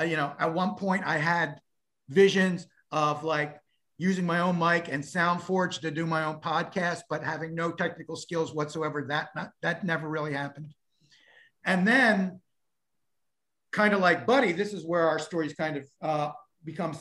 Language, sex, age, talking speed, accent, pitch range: English, male, 50-69, 165 wpm, American, 155-195 Hz